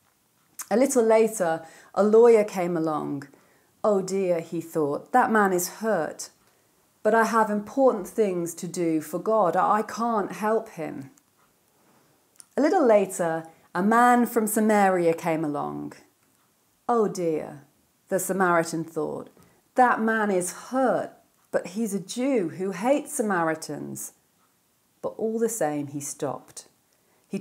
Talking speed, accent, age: 130 wpm, British, 40-59